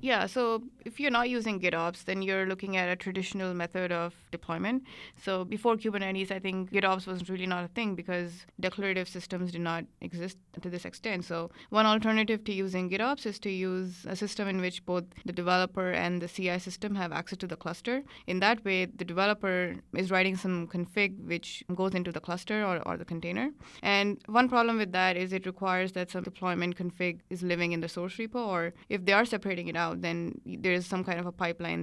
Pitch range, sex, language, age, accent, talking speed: 180-200 Hz, female, English, 20-39, Indian, 210 wpm